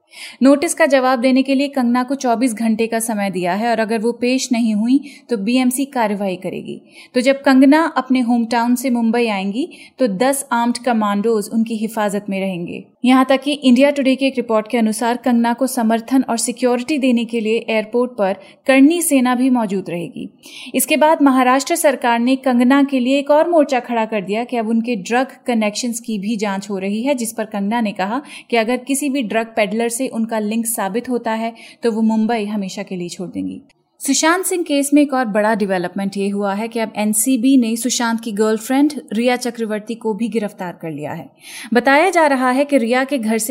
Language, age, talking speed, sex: Hindi, 30-49, 165 wpm, female